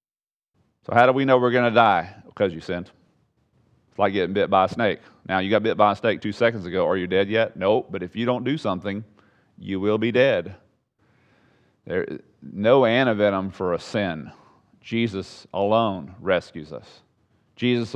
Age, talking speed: 40-59, 185 wpm